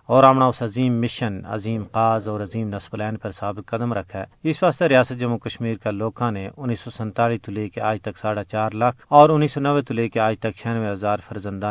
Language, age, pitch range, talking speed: Urdu, 40-59, 105-135 Hz, 235 wpm